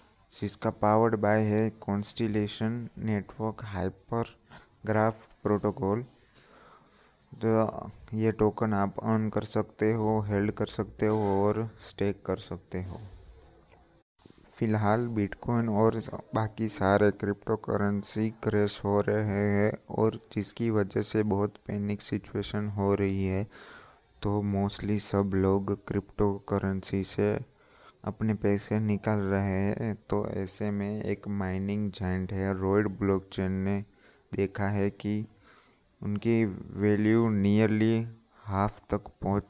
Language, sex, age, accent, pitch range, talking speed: Hindi, male, 30-49, native, 100-110 Hz, 115 wpm